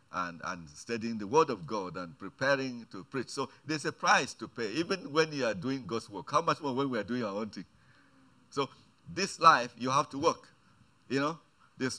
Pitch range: 125-175 Hz